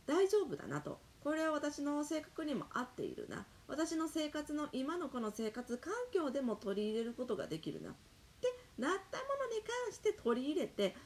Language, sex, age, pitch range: Japanese, female, 30-49, 225-350 Hz